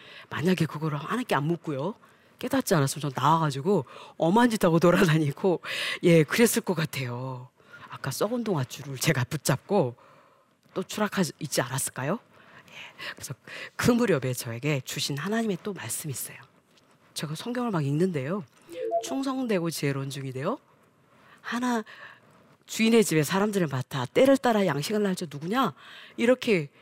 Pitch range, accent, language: 140-210 Hz, native, Korean